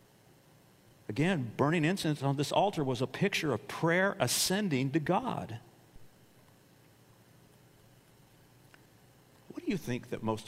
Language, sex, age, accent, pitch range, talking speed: English, male, 50-69, American, 100-155 Hz, 115 wpm